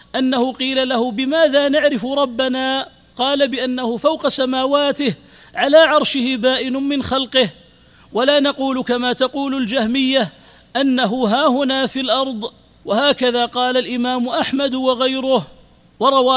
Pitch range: 255-280 Hz